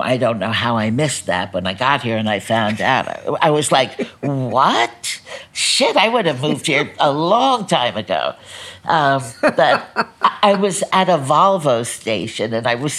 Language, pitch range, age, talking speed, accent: English, 120-170 Hz, 60-79, 185 wpm, American